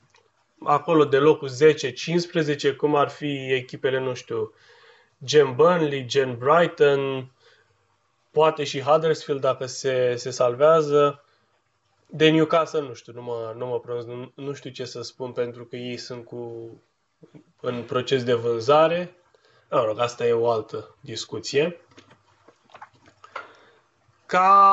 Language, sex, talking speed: Romanian, male, 120 wpm